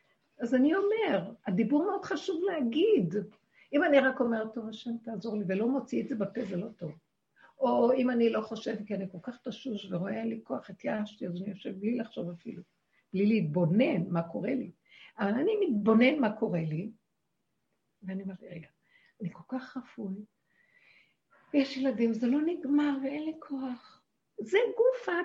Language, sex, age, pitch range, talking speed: Hebrew, female, 60-79, 210-295 Hz, 170 wpm